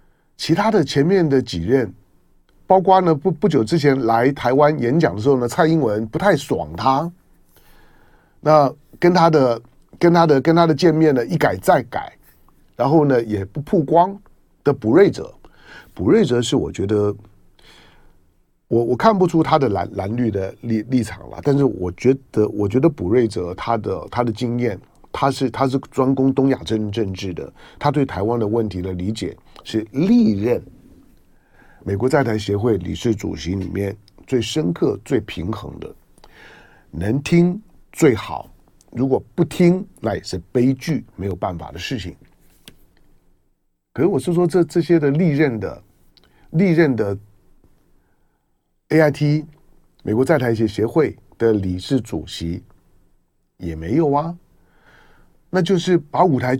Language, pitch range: Chinese, 105-160 Hz